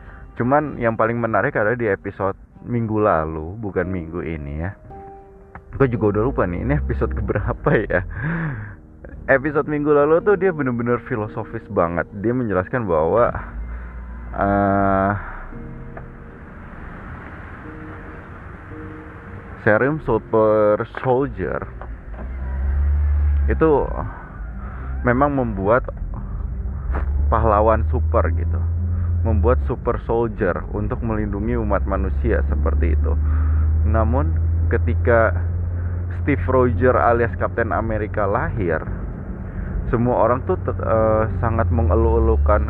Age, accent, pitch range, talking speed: 20-39, native, 80-110 Hz, 95 wpm